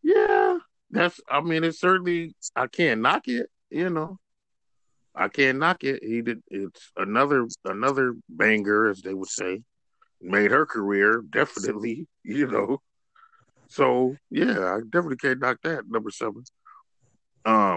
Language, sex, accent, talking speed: English, male, American, 140 wpm